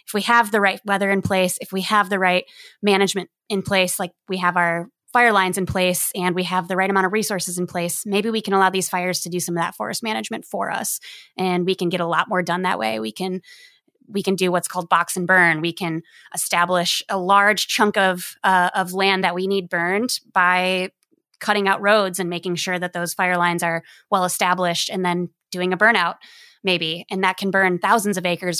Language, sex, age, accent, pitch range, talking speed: English, female, 20-39, American, 180-205 Hz, 230 wpm